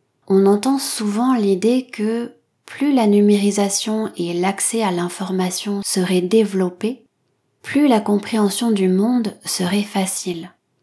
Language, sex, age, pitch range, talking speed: French, female, 30-49, 180-215 Hz, 115 wpm